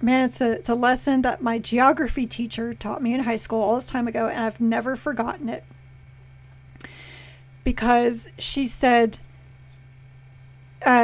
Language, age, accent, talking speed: English, 30-49, American, 145 wpm